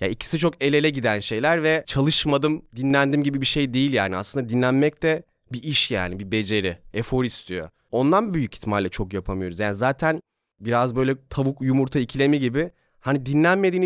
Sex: male